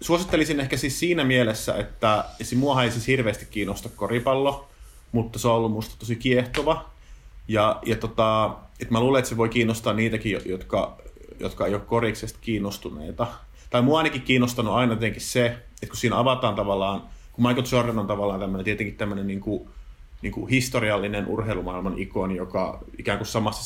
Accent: native